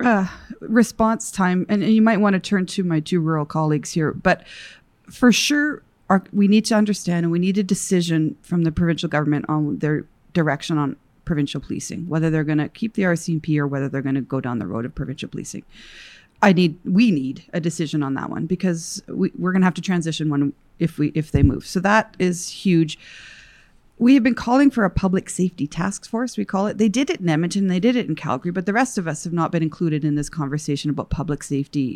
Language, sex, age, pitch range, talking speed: English, female, 40-59, 150-190 Hz, 225 wpm